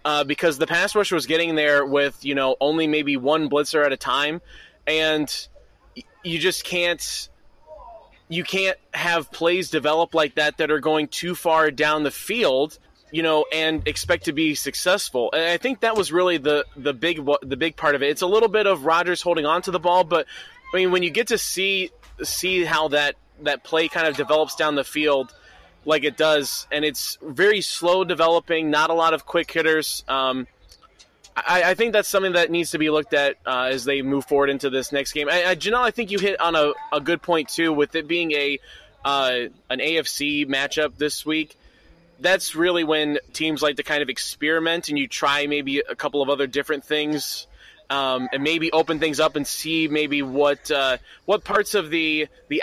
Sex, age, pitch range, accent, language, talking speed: male, 20-39, 145-170 Hz, American, English, 210 wpm